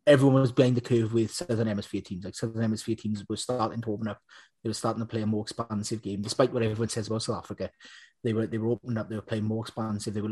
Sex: male